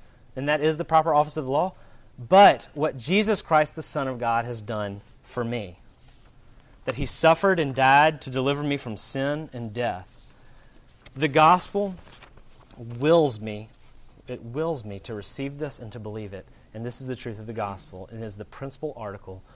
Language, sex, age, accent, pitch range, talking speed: English, male, 30-49, American, 110-140 Hz, 185 wpm